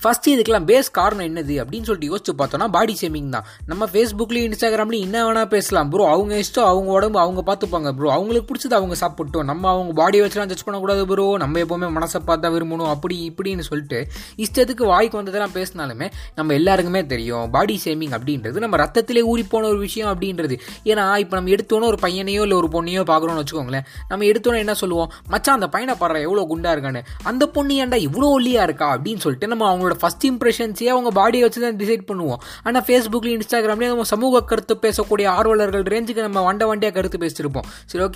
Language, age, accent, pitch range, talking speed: Tamil, 20-39, native, 165-225 Hz, 155 wpm